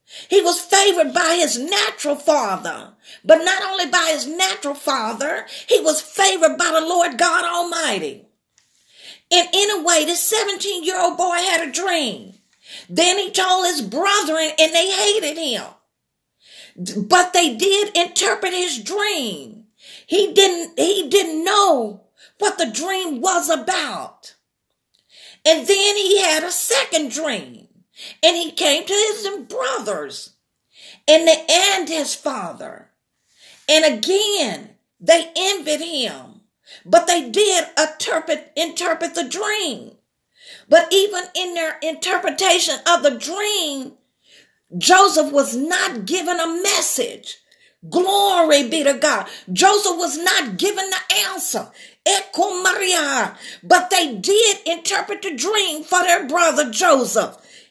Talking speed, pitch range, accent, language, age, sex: 125 wpm, 310-380 Hz, American, English, 40-59, female